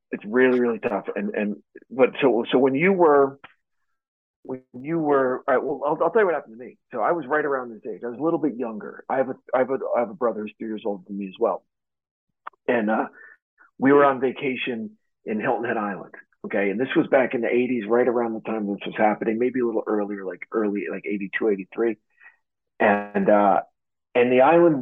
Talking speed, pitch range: 235 wpm, 110-140 Hz